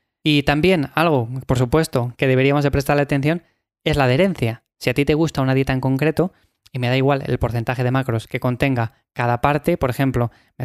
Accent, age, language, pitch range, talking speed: Spanish, 20-39, Spanish, 130-150 Hz, 210 wpm